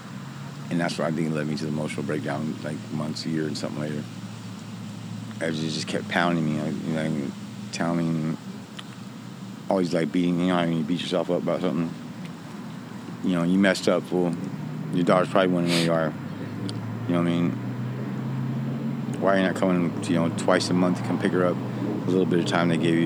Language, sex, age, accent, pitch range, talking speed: English, male, 30-49, American, 80-90 Hz, 220 wpm